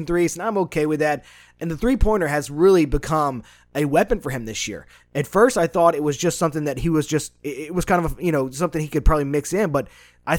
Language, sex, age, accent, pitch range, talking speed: English, male, 20-39, American, 140-175 Hz, 260 wpm